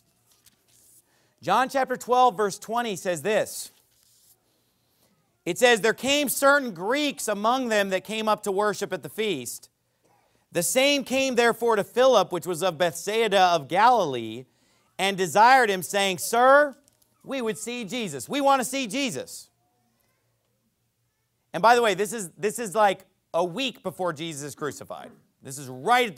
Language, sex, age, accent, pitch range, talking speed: English, male, 40-59, American, 185-270 Hz, 155 wpm